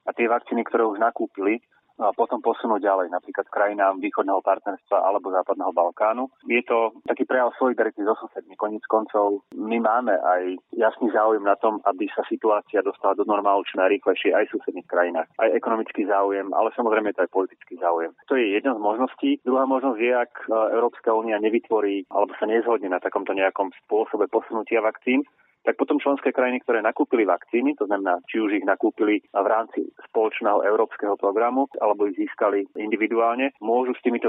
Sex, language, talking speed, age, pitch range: male, Slovak, 175 wpm, 30-49, 100-120 Hz